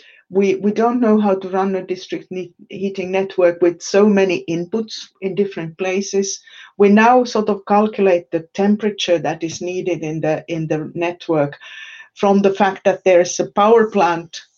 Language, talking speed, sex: English, 175 wpm, female